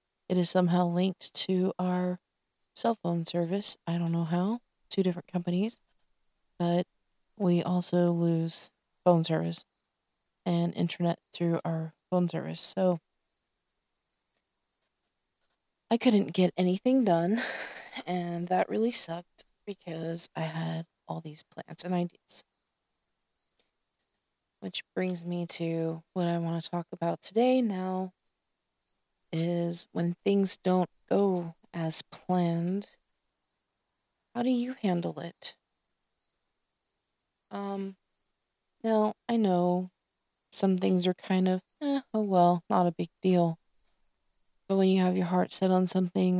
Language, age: English, 20-39